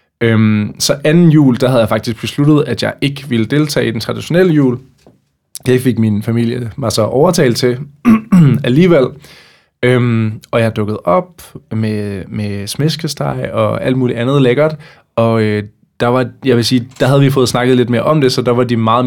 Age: 20-39